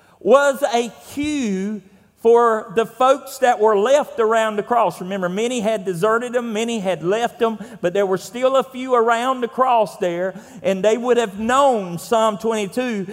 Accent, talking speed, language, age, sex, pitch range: American, 175 wpm, English, 40-59, male, 200-250 Hz